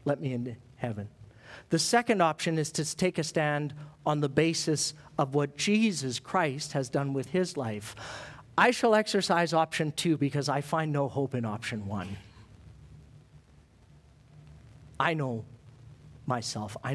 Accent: American